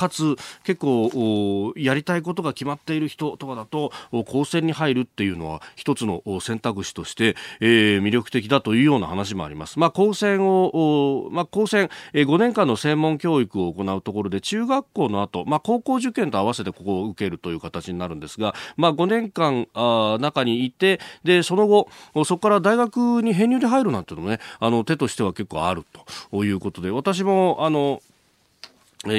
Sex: male